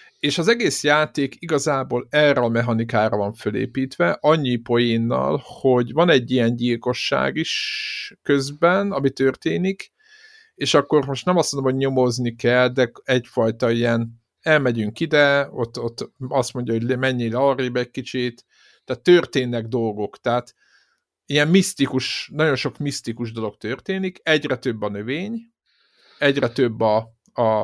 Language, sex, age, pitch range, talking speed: Hungarian, male, 50-69, 115-145 Hz, 135 wpm